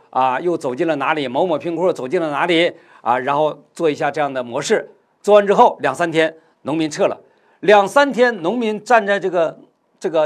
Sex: male